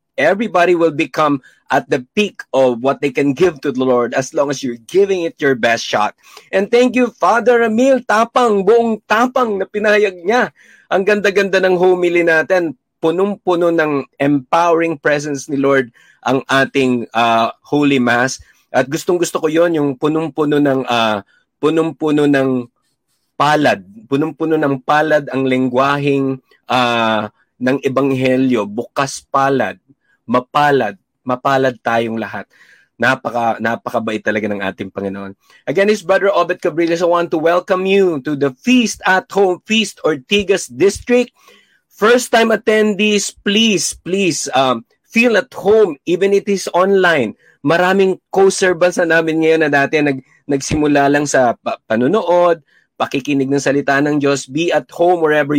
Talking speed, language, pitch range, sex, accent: 145 wpm, Filipino, 135-190 Hz, male, native